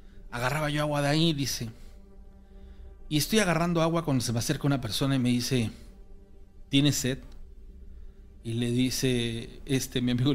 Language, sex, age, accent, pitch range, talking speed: Spanish, male, 40-59, Mexican, 100-150 Hz, 155 wpm